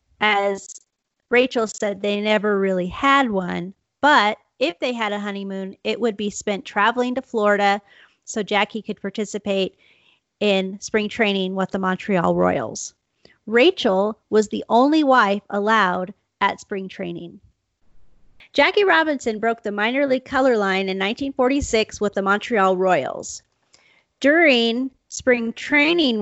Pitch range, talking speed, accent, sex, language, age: 200-245 Hz, 135 wpm, American, female, English, 30-49